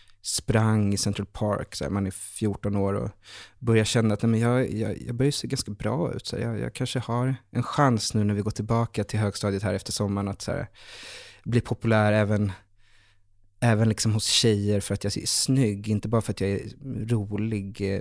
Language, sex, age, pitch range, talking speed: Swedish, male, 20-39, 105-120 Hz, 210 wpm